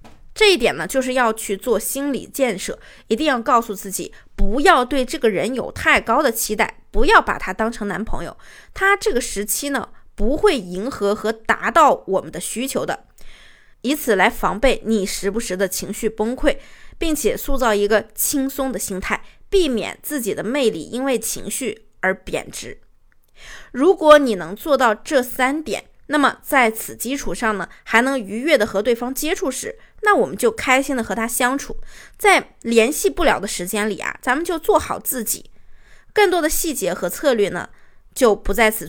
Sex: female